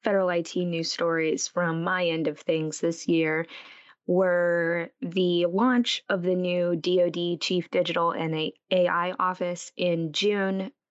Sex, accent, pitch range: female, American, 165-195 Hz